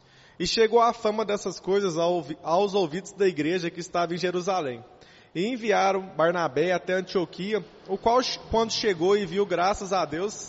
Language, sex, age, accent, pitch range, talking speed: Portuguese, male, 20-39, Brazilian, 160-205 Hz, 160 wpm